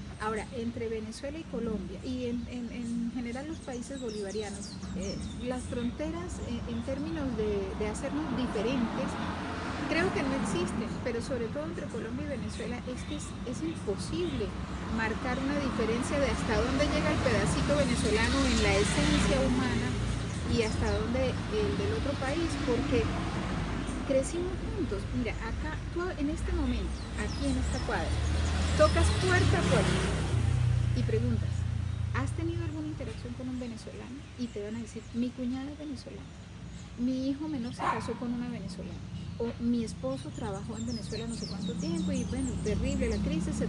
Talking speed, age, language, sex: 160 wpm, 40-59, Spanish, female